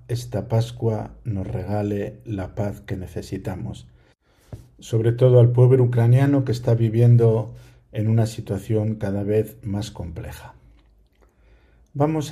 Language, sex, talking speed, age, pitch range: Spanish, male, 115 wpm, 50-69, 100-120 Hz